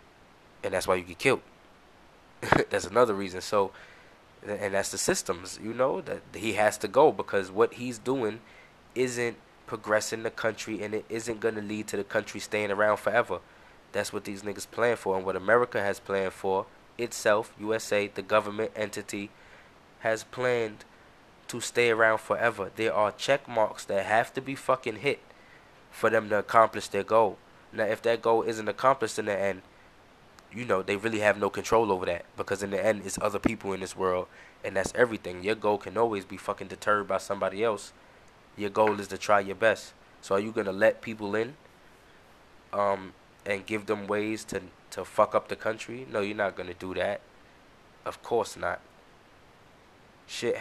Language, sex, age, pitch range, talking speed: English, male, 20-39, 100-115 Hz, 185 wpm